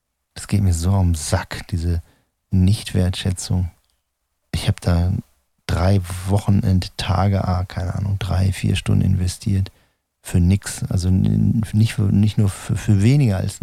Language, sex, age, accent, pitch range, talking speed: German, male, 40-59, German, 90-100 Hz, 130 wpm